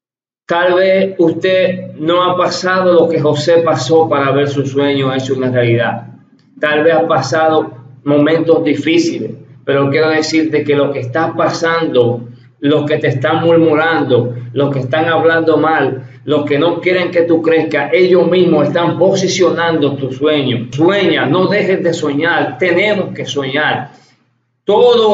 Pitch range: 145-180 Hz